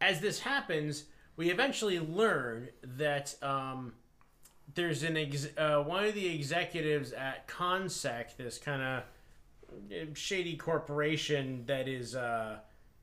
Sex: male